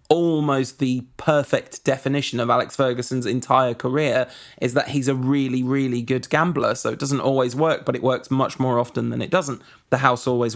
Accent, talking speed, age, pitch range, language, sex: British, 195 wpm, 20-39, 125-155 Hz, English, male